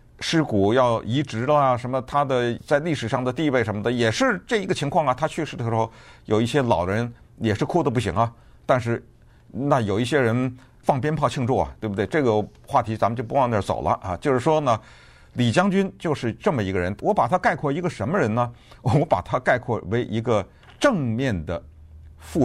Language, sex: Chinese, male